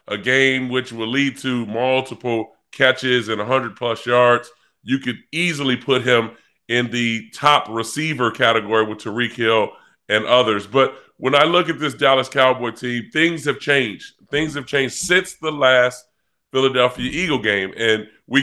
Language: English